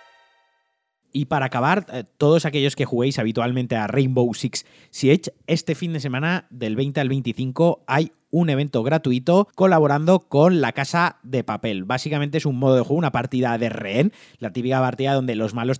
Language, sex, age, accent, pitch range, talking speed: Spanish, male, 30-49, Spanish, 125-155 Hz, 175 wpm